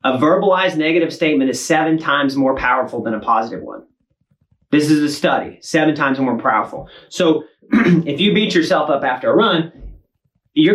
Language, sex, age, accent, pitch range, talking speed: English, male, 30-49, American, 140-175 Hz, 175 wpm